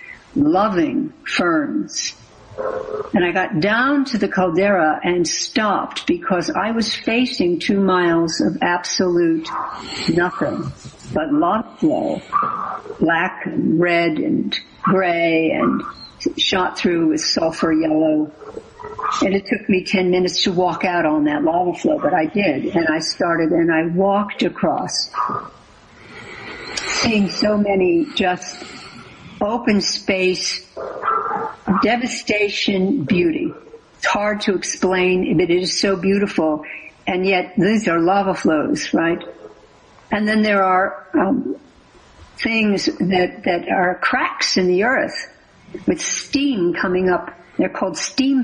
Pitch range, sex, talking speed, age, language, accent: 180-290 Hz, female, 125 wpm, 60-79, English, American